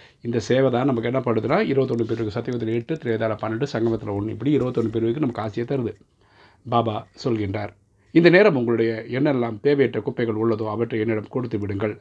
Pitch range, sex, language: 110-130 Hz, male, Tamil